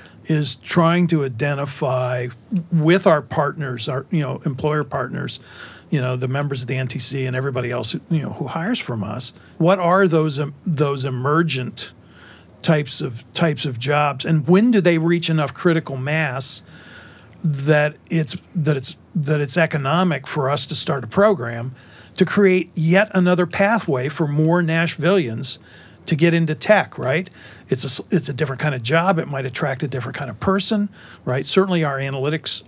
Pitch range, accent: 130-165 Hz, American